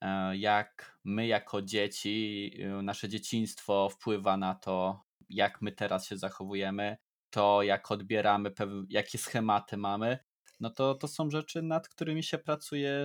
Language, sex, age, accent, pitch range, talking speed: Polish, male, 20-39, native, 105-135 Hz, 135 wpm